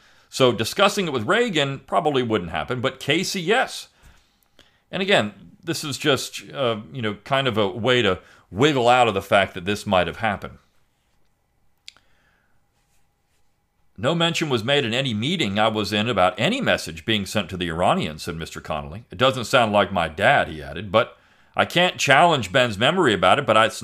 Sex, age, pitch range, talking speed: male, 40-59, 100-140 Hz, 185 wpm